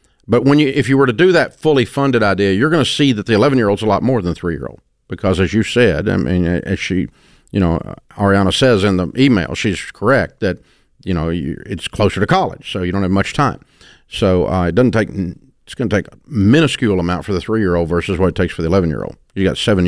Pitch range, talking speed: 90-120 Hz, 245 wpm